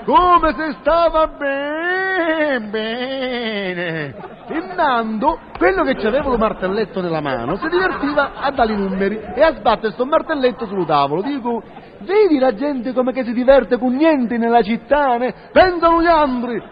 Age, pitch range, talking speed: 40-59, 235-335 Hz, 150 wpm